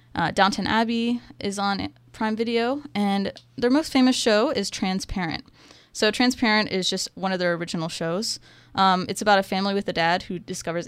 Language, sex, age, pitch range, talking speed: English, female, 20-39, 170-210 Hz, 180 wpm